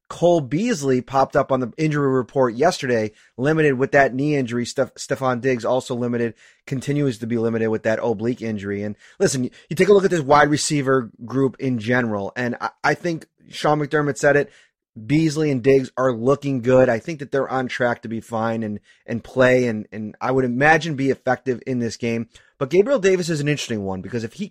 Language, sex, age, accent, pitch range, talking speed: English, male, 30-49, American, 125-160 Hz, 210 wpm